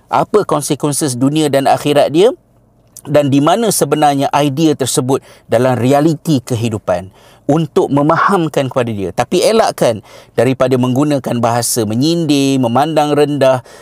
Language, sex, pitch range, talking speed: Malay, male, 110-140 Hz, 115 wpm